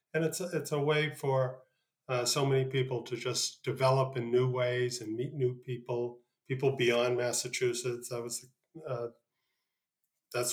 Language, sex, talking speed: English, male, 160 wpm